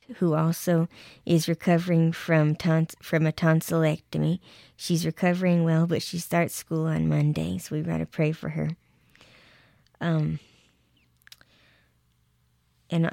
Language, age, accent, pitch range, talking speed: English, 20-39, American, 155-170 Hz, 125 wpm